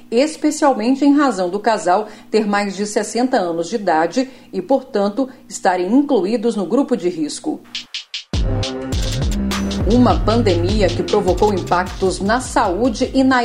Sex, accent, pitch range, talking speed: female, Brazilian, 180-250 Hz, 130 wpm